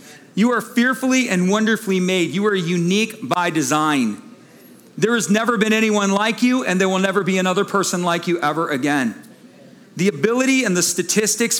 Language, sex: English, male